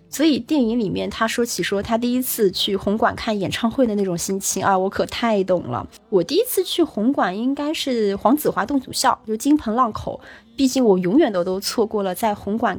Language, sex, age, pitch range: Chinese, female, 20-39, 195-255 Hz